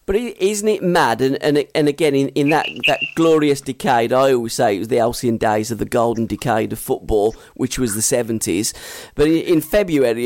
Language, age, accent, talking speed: English, 40-59, British, 205 wpm